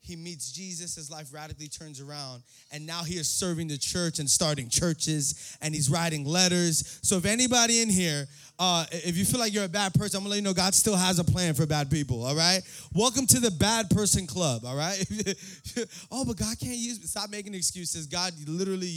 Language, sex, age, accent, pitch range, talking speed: English, male, 20-39, American, 145-200 Hz, 220 wpm